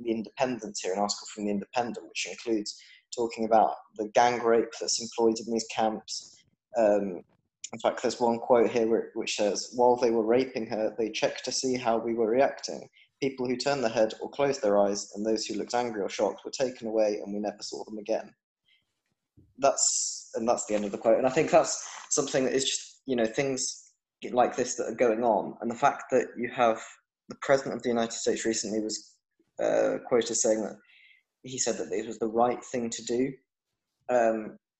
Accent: British